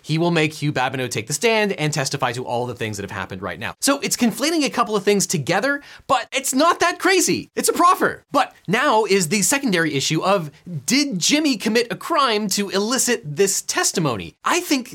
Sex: male